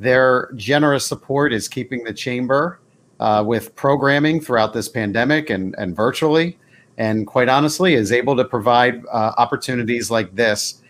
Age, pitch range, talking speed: 40-59, 110-140 Hz, 150 wpm